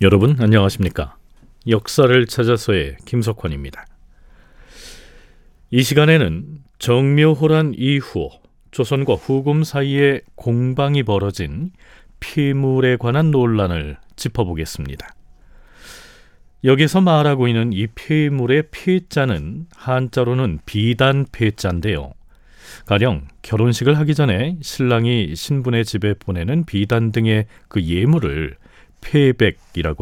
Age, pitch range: 40-59, 95-140 Hz